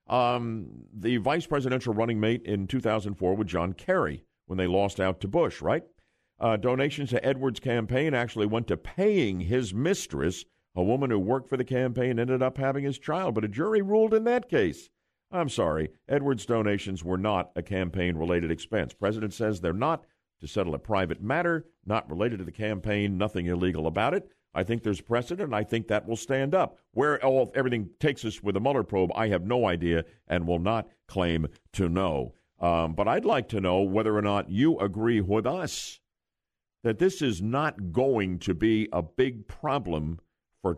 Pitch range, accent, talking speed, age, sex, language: 95-130 Hz, American, 190 wpm, 50-69, male, English